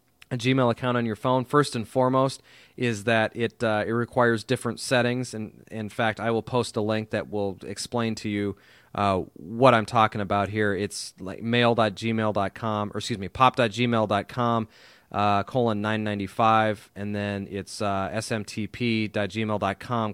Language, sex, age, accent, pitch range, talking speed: English, male, 30-49, American, 105-125 Hz, 160 wpm